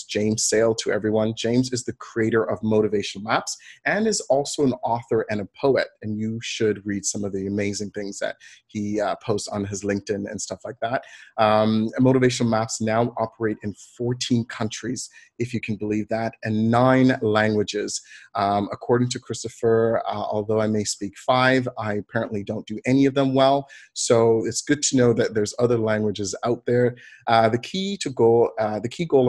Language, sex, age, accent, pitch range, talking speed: English, male, 30-49, American, 105-125 Hz, 180 wpm